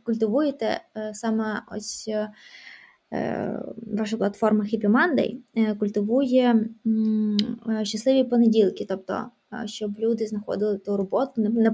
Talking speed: 85 wpm